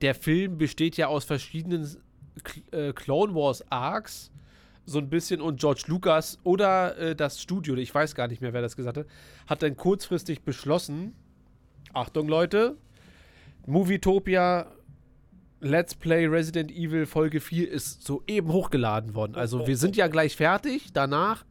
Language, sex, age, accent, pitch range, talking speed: German, male, 30-49, German, 130-165 Hz, 140 wpm